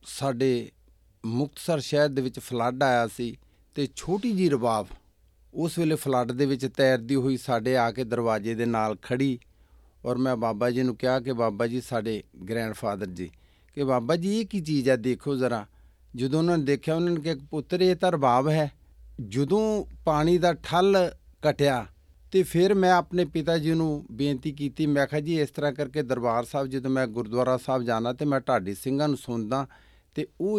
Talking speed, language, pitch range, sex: 185 wpm, Punjabi, 125-155 Hz, male